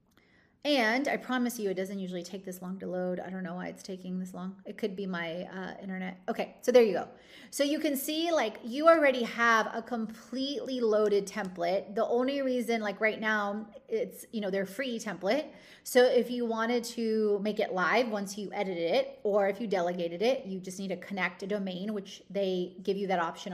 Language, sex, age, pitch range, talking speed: English, female, 30-49, 200-250 Hz, 215 wpm